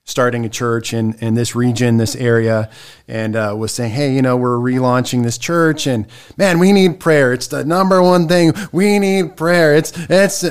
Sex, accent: male, American